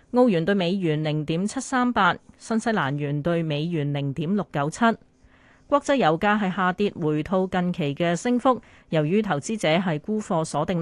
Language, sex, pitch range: Chinese, female, 155-210 Hz